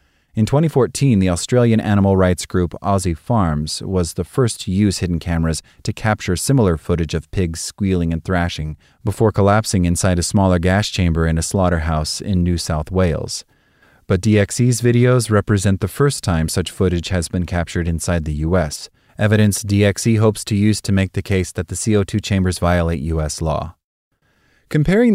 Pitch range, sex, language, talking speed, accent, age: 85-105 Hz, male, English, 170 wpm, American, 30-49